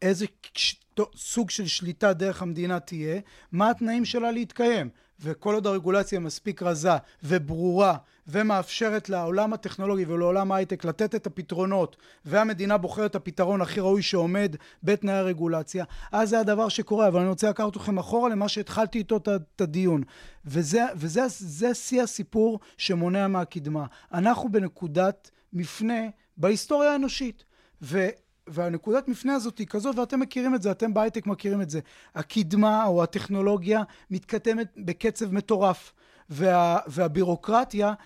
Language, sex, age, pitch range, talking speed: Hebrew, male, 30-49, 185-225 Hz, 130 wpm